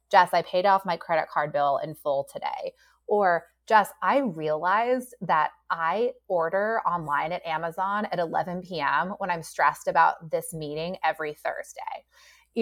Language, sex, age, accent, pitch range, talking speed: English, female, 30-49, American, 160-200 Hz, 155 wpm